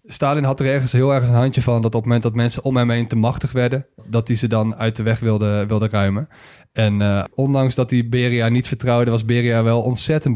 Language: Dutch